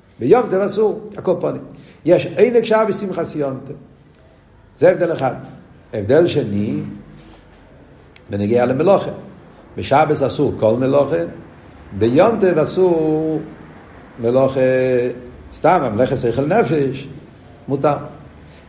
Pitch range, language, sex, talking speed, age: 110-155 Hz, Hebrew, male, 95 wpm, 60-79